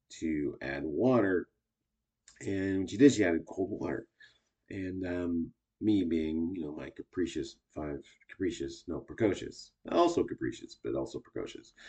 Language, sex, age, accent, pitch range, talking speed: English, male, 30-49, American, 80-110 Hz, 135 wpm